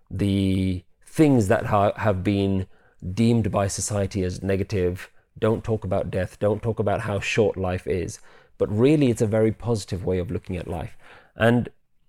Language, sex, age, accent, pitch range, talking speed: English, male, 30-49, British, 100-120 Hz, 165 wpm